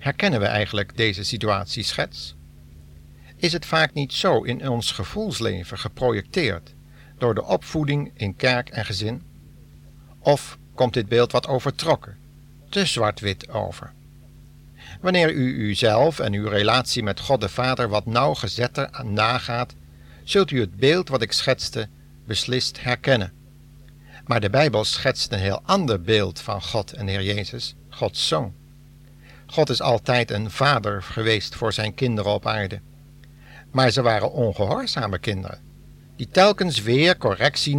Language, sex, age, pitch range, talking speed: Dutch, male, 60-79, 100-135 Hz, 140 wpm